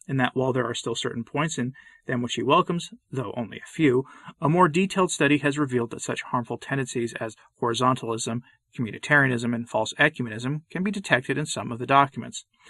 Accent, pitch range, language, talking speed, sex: American, 125-150 Hz, English, 195 wpm, male